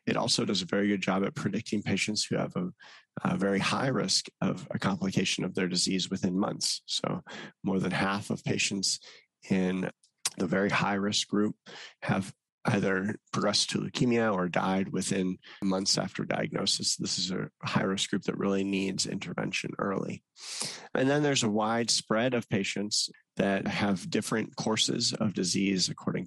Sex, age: male, 30-49